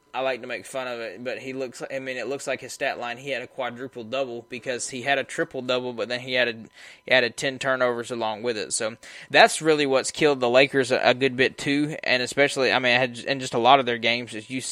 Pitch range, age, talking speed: 120-135 Hz, 20-39, 260 wpm